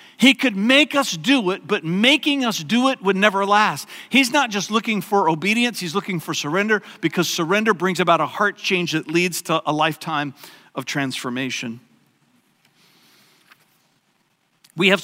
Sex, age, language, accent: male, 50-69, English, American